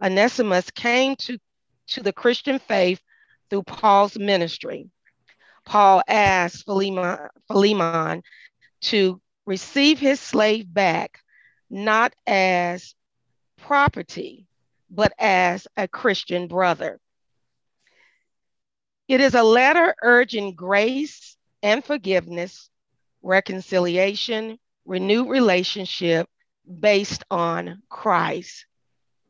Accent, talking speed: American, 85 wpm